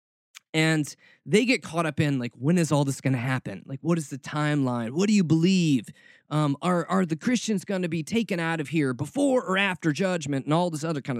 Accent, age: American, 20-39